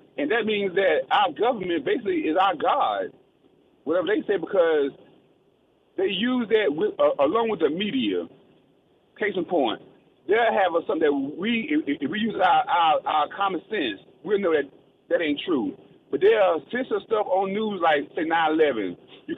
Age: 30-49